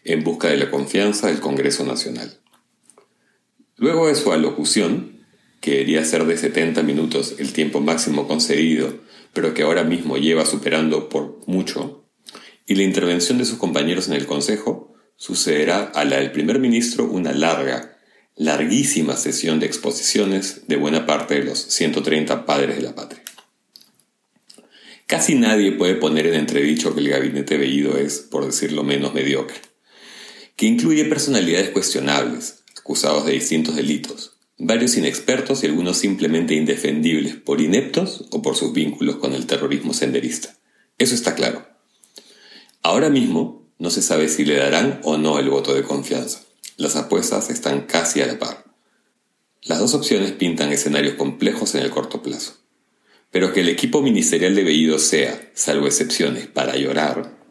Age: 40-59